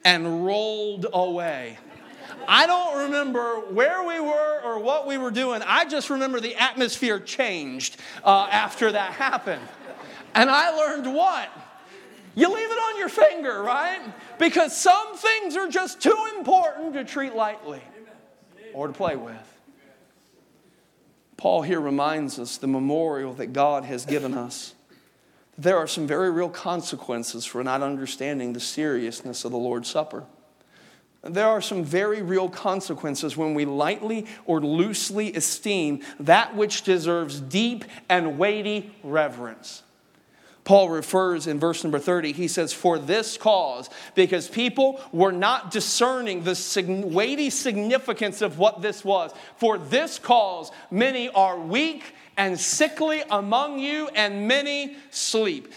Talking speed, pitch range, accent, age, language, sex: 140 wpm, 170-265 Hz, American, 40-59, English, male